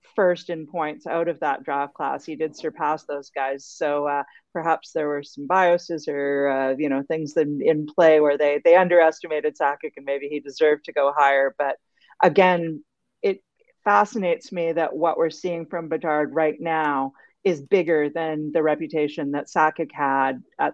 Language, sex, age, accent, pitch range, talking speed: English, female, 40-59, American, 150-185 Hz, 180 wpm